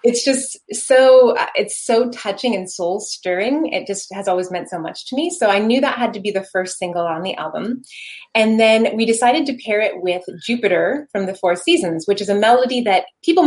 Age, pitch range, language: 20-39, 180-230 Hz, English